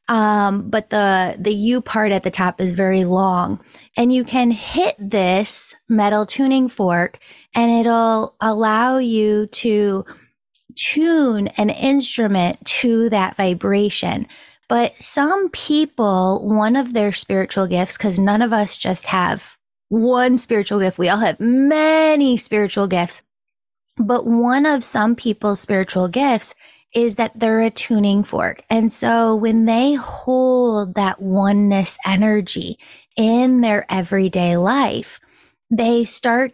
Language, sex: English, female